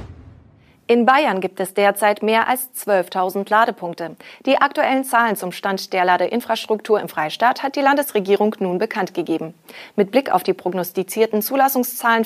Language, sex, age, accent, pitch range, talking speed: German, female, 30-49, German, 185-235 Hz, 145 wpm